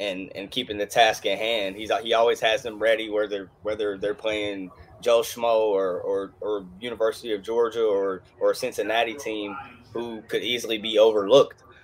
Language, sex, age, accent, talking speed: English, male, 20-39, American, 170 wpm